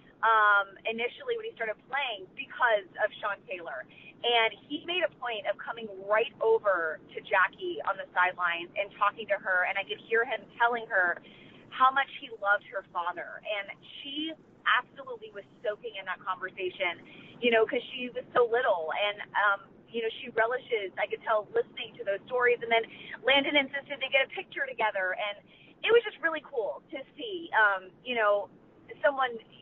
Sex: female